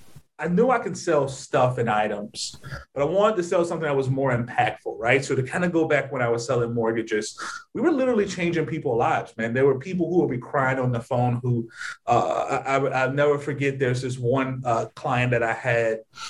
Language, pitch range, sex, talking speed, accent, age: English, 120-145 Hz, male, 220 wpm, American, 30-49